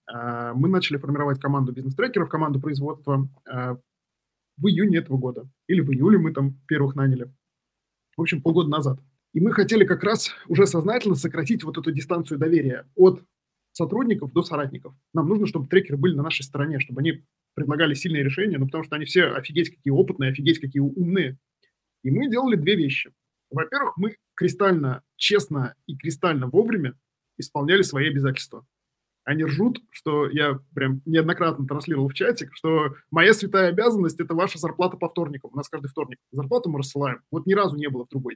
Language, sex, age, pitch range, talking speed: Russian, male, 20-39, 140-185 Hz, 170 wpm